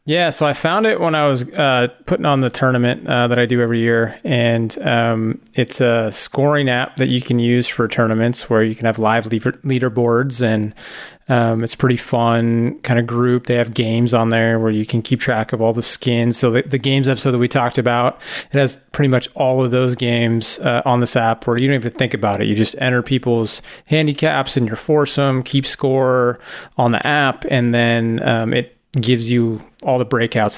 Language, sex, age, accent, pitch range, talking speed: English, male, 30-49, American, 115-135 Hz, 215 wpm